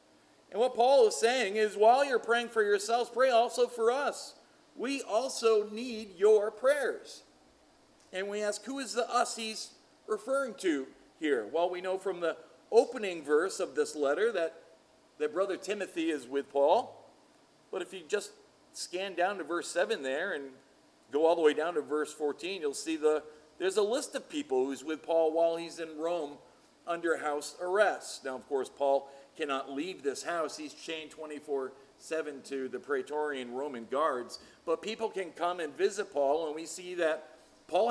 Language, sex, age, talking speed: English, male, 40-59, 180 wpm